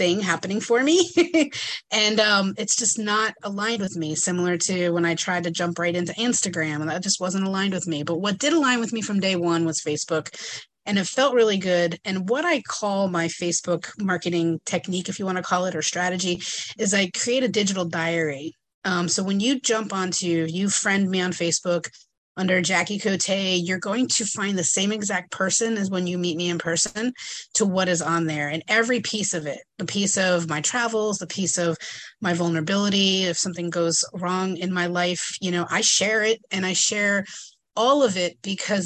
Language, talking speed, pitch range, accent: English, 210 wpm, 175-205 Hz, American